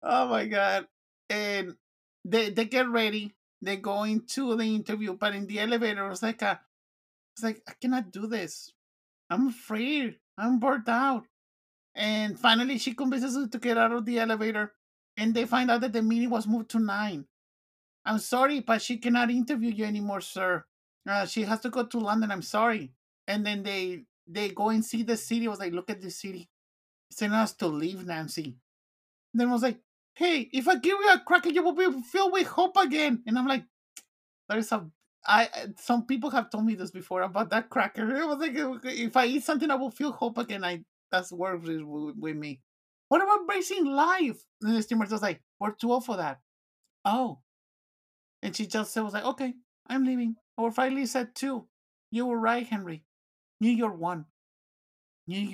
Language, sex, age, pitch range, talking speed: English, male, 50-69, 200-255 Hz, 195 wpm